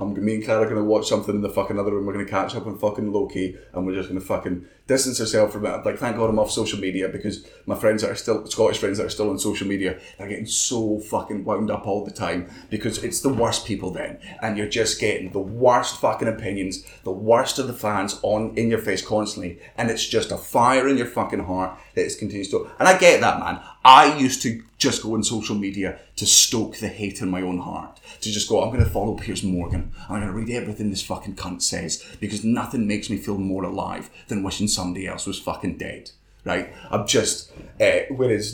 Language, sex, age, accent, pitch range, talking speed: English, male, 30-49, British, 95-115 Hz, 245 wpm